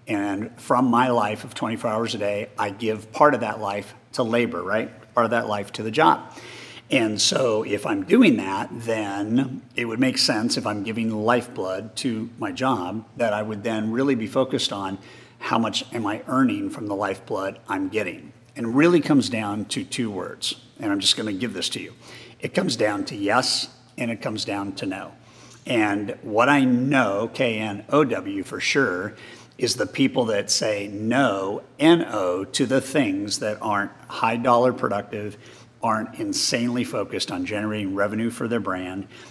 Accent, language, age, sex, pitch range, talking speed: American, English, 50-69, male, 105-130 Hz, 185 wpm